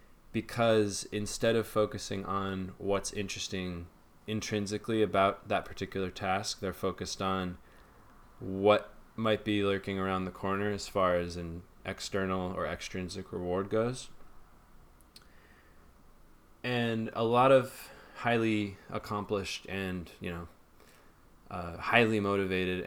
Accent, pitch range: American, 90-105 Hz